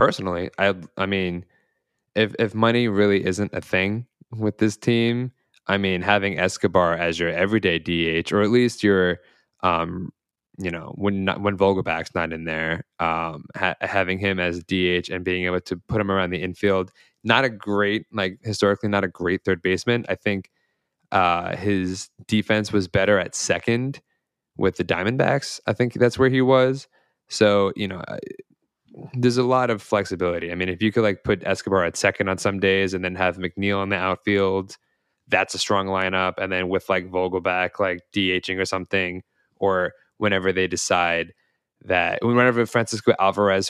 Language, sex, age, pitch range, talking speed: English, male, 20-39, 95-110 Hz, 180 wpm